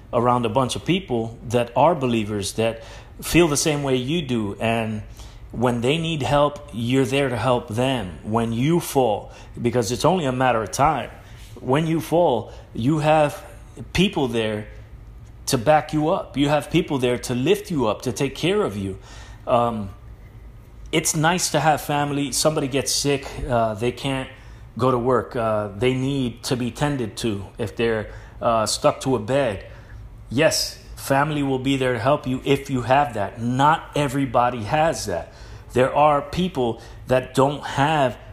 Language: English